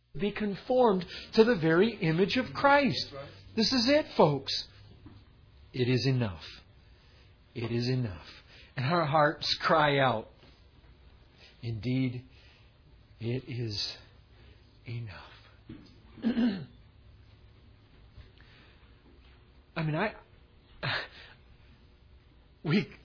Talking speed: 80 wpm